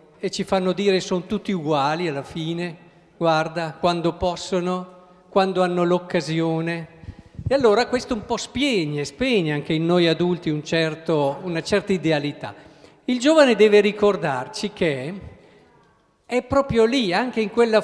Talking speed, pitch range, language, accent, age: 145 wpm, 165-220 Hz, Italian, native, 50-69